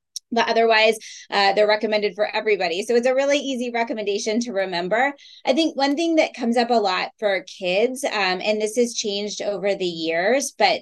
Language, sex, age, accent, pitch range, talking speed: English, female, 20-39, American, 180-230 Hz, 195 wpm